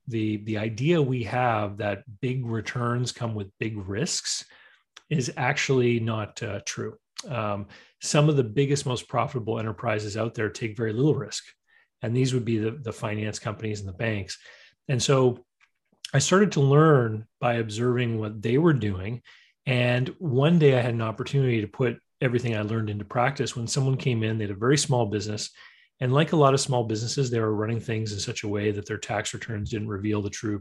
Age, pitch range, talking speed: 30-49, 110-130 Hz, 200 wpm